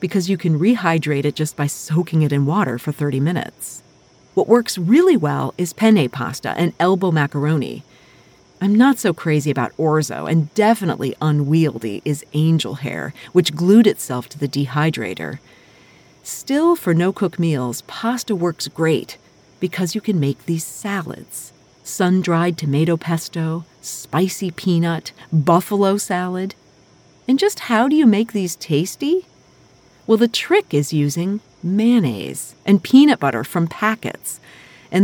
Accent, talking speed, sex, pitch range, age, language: American, 140 wpm, female, 145-195 Hz, 40-59, English